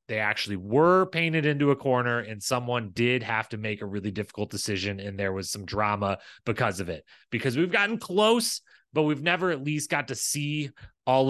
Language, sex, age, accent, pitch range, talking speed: English, male, 30-49, American, 110-150 Hz, 200 wpm